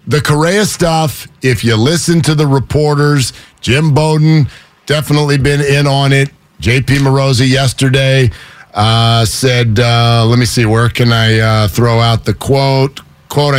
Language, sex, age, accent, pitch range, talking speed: English, male, 50-69, American, 110-140 Hz, 150 wpm